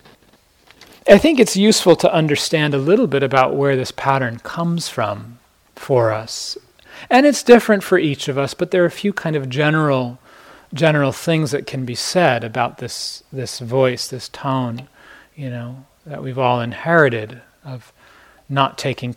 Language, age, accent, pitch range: English, 30-49, American, 125-145 Hz